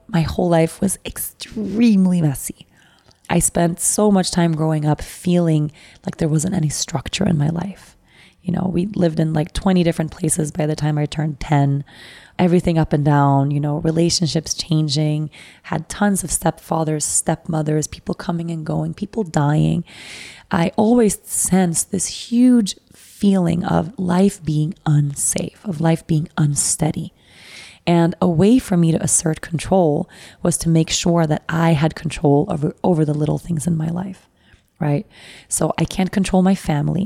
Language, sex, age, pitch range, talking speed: English, female, 20-39, 155-180 Hz, 165 wpm